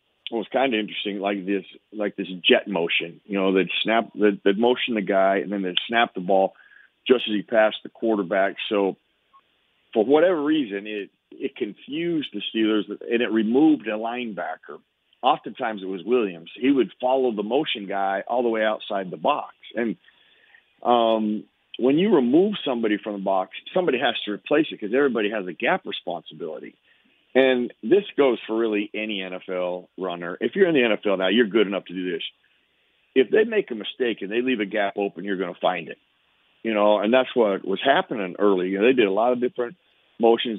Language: English